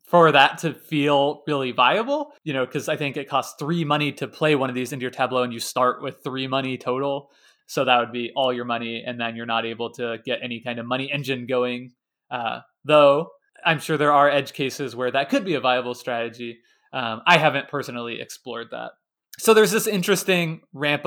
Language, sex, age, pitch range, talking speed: English, male, 20-39, 125-155 Hz, 215 wpm